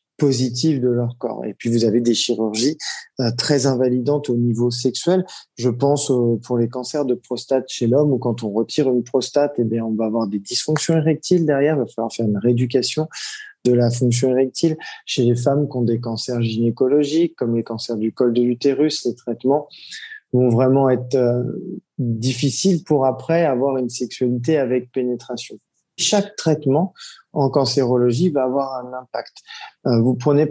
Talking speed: 165 wpm